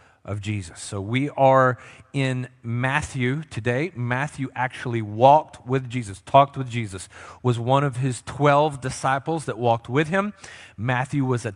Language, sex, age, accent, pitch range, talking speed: English, male, 40-59, American, 115-135 Hz, 150 wpm